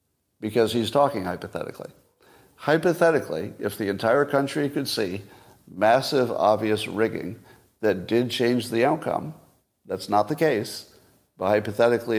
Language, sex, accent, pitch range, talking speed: English, male, American, 105-140 Hz, 125 wpm